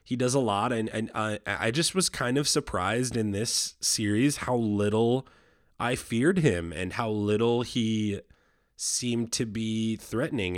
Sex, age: male, 20-39